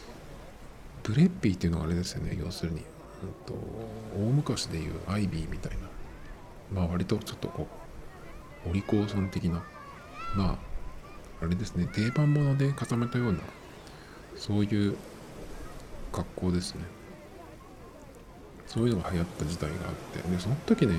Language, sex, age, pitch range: Japanese, male, 50-69, 85-110 Hz